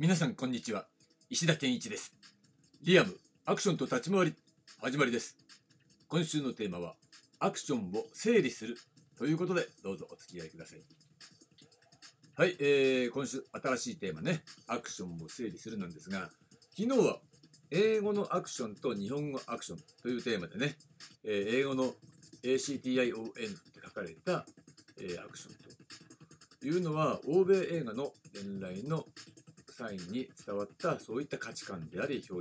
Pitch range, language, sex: 120-175 Hz, Japanese, male